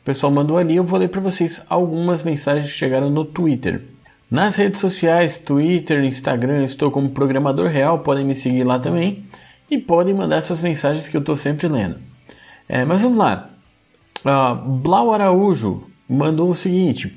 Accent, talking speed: Brazilian, 170 wpm